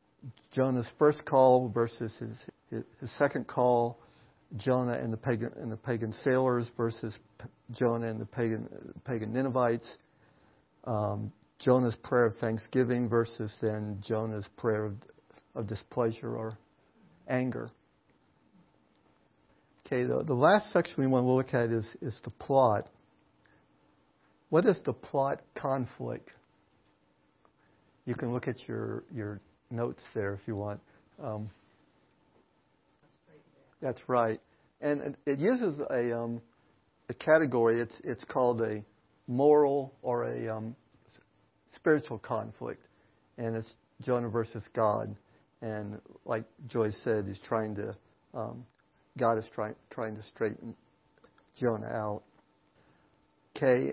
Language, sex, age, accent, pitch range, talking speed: English, male, 50-69, American, 110-125 Hz, 120 wpm